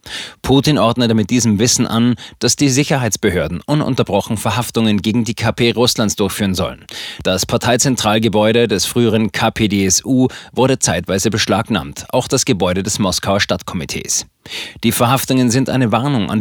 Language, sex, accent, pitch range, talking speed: German, male, German, 105-125 Hz, 135 wpm